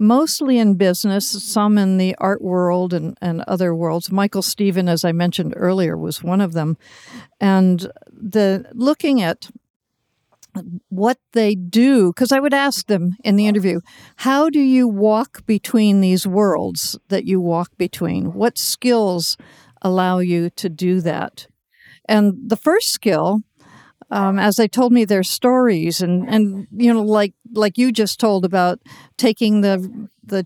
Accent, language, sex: American, English, female